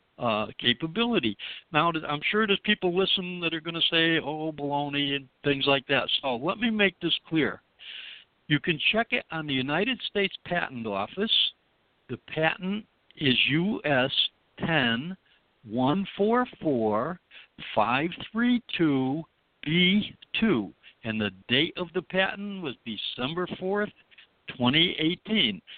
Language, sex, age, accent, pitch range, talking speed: English, male, 60-79, American, 130-185 Hz, 115 wpm